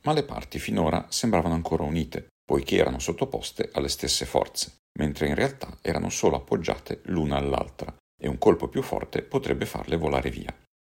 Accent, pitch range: native, 65-80 Hz